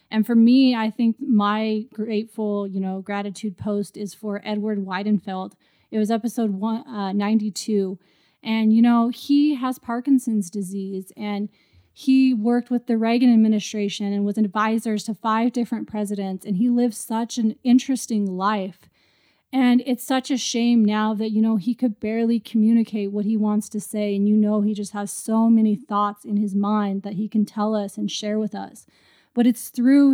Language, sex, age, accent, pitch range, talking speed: English, female, 30-49, American, 210-235 Hz, 180 wpm